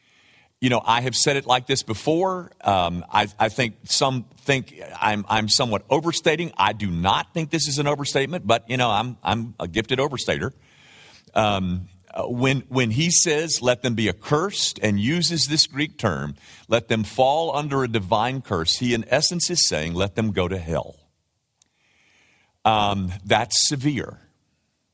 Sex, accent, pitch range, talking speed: male, American, 105-145 Hz, 165 wpm